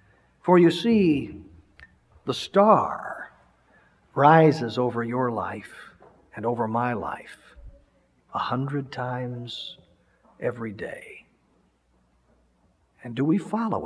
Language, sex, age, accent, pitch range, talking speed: English, male, 50-69, American, 130-195 Hz, 95 wpm